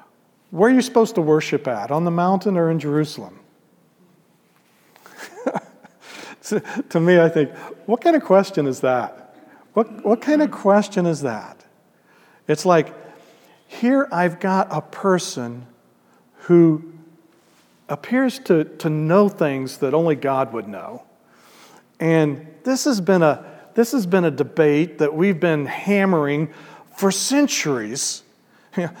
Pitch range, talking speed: 145-200 Hz, 125 wpm